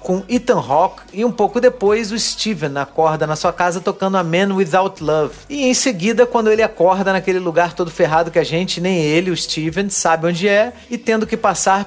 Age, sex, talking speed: 40-59, male, 210 wpm